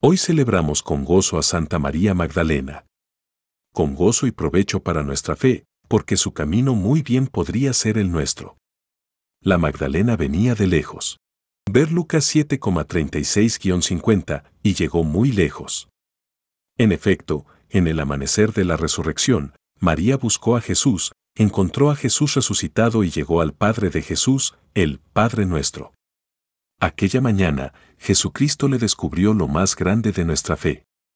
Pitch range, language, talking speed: 75-110 Hz, Spanish, 140 wpm